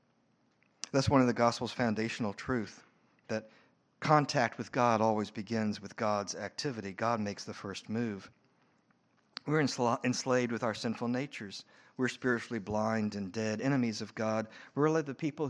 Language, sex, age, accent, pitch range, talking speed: English, male, 50-69, American, 110-135 Hz, 160 wpm